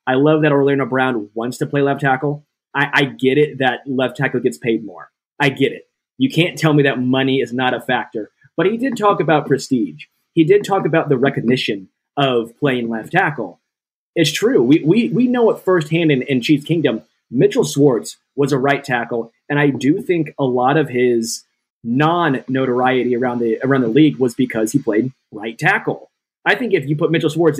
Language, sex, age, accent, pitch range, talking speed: English, male, 20-39, American, 125-155 Hz, 205 wpm